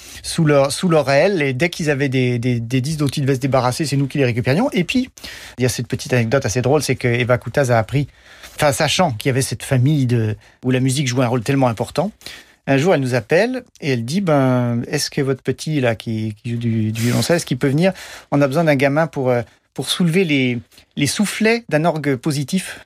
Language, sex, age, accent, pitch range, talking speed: French, male, 40-59, French, 125-150 Hz, 245 wpm